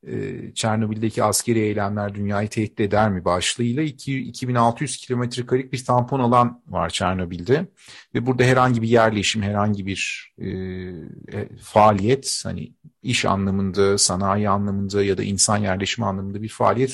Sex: male